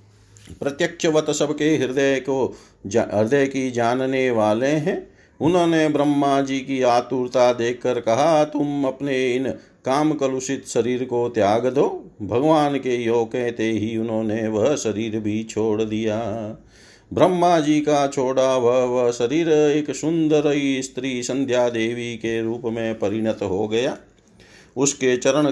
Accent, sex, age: native, male, 50-69